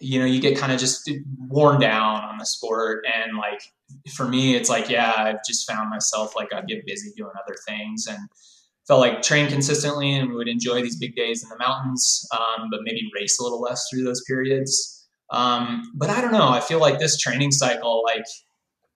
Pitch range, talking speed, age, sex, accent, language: 115-155 Hz, 210 wpm, 20-39, male, American, English